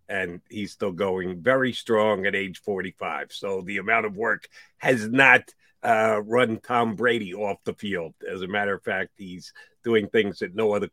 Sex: male